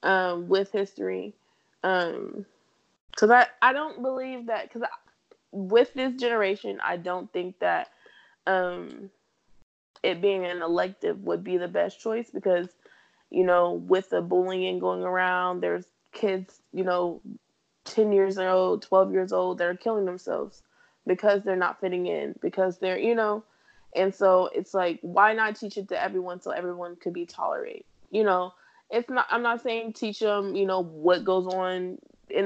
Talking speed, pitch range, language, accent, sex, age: 165 wpm, 180-215 Hz, English, American, female, 20-39